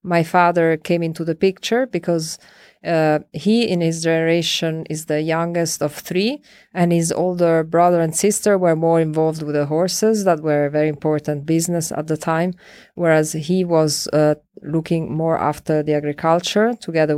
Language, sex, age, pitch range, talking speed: English, female, 20-39, 155-180 Hz, 170 wpm